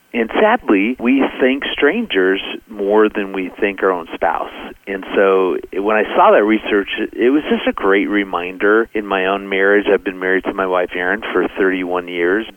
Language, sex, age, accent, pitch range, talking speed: English, male, 40-59, American, 95-115 Hz, 185 wpm